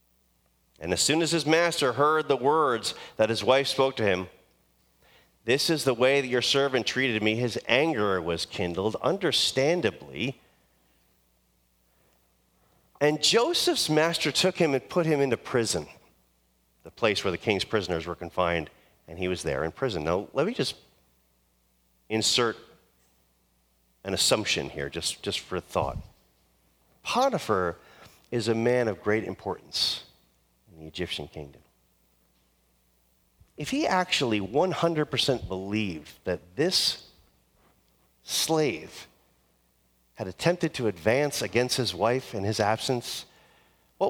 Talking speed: 130 wpm